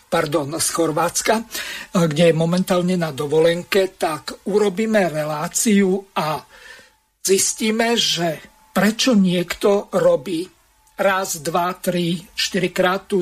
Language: Slovak